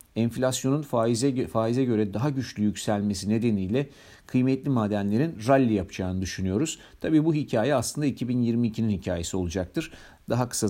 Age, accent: 50-69, native